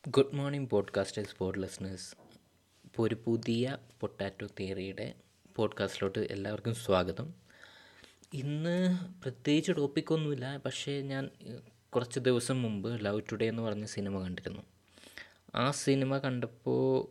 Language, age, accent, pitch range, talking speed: Malayalam, 20-39, native, 105-125 Hz, 110 wpm